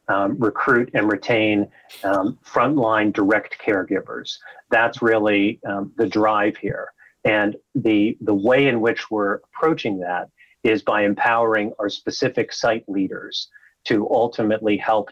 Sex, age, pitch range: male, 40-59, 105-115 Hz